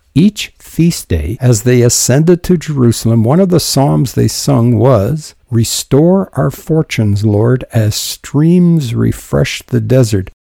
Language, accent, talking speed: English, American, 135 wpm